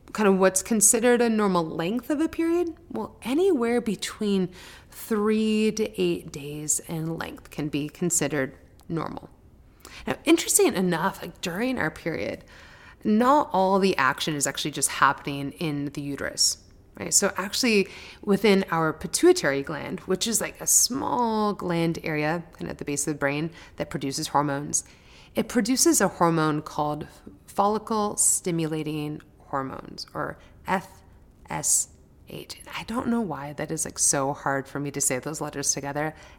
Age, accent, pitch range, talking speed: 30-49, American, 145-200 Hz, 150 wpm